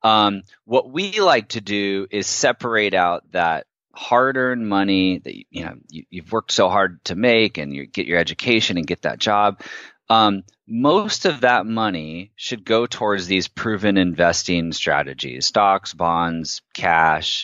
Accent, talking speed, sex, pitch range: American, 160 wpm, male, 85-110 Hz